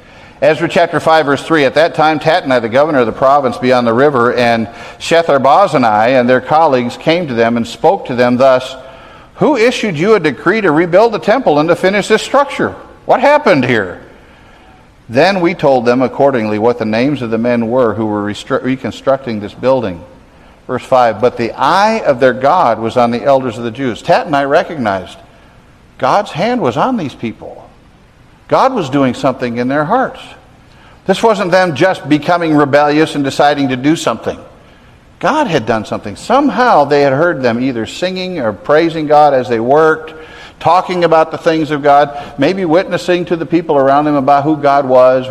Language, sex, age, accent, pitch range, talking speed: English, male, 50-69, American, 125-165 Hz, 190 wpm